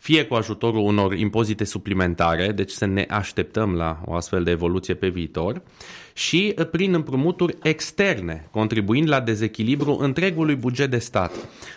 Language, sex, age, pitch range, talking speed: Romanian, male, 20-39, 100-130 Hz, 145 wpm